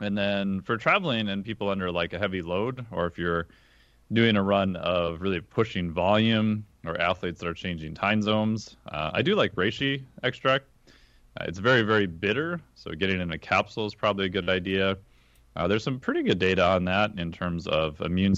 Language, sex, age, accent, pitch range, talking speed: English, male, 30-49, American, 90-105 Hz, 200 wpm